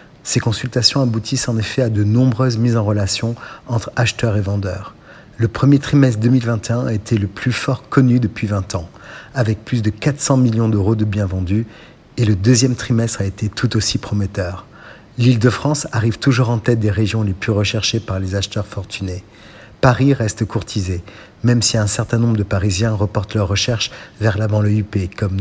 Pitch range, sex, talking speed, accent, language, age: 100-120 Hz, male, 185 wpm, French, Italian, 50-69